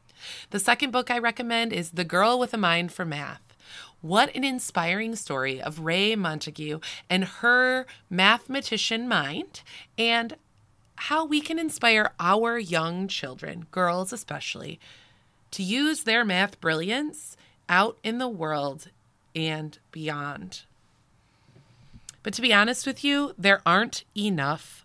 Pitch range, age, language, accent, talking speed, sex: 150-225 Hz, 20-39, English, American, 130 wpm, female